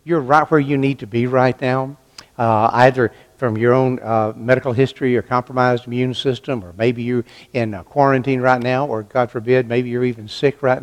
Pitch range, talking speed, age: 120-145 Hz, 200 wpm, 60-79